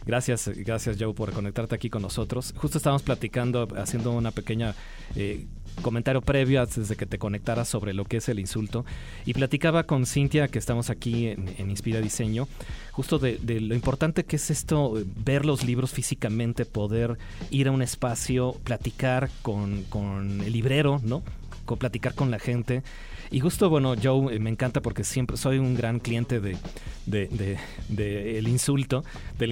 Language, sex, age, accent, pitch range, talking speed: Spanish, male, 30-49, Mexican, 110-135 Hz, 175 wpm